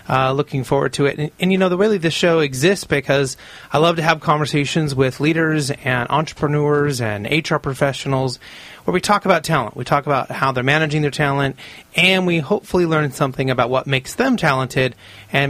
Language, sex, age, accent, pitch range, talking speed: English, male, 30-49, American, 125-150 Hz, 205 wpm